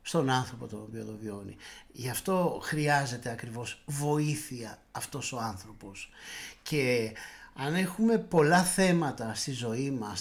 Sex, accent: male, native